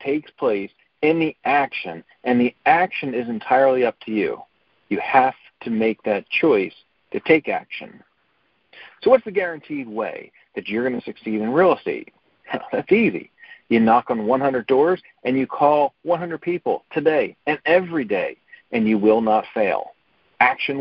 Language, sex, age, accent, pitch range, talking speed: English, male, 50-69, American, 110-155 Hz, 165 wpm